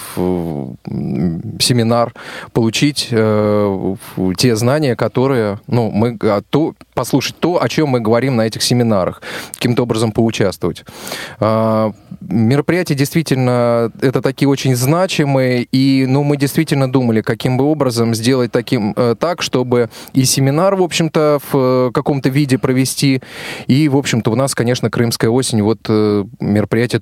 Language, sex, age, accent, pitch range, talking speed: Russian, male, 20-39, native, 115-140 Hz, 140 wpm